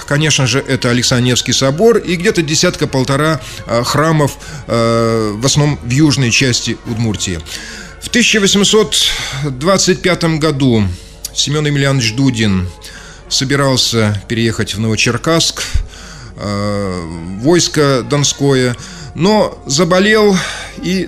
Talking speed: 90 wpm